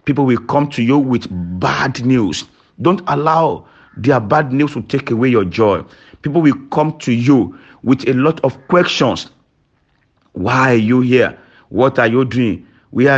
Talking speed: 170 wpm